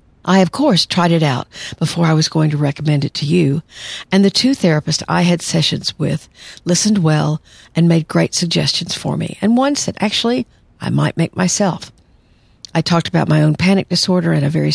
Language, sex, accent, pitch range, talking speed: English, female, American, 155-180 Hz, 200 wpm